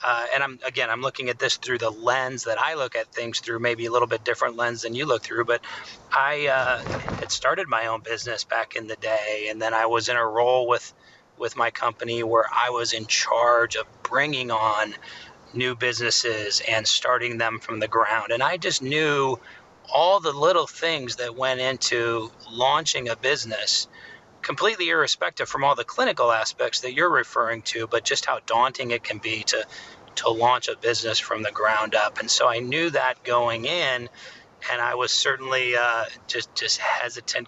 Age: 30-49